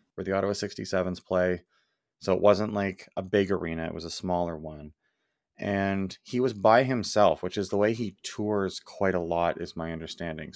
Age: 30-49